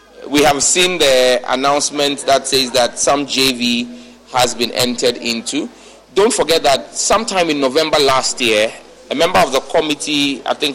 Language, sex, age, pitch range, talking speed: English, male, 30-49, 125-150 Hz, 160 wpm